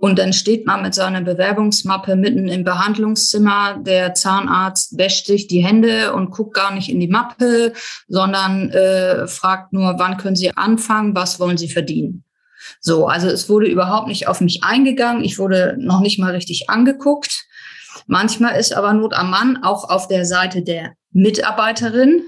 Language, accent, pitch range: German, German, 180-210 Hz